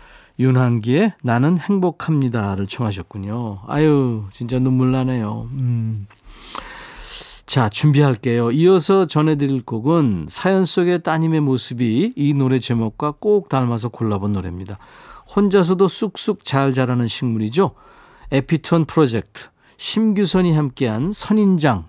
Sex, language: male, Korean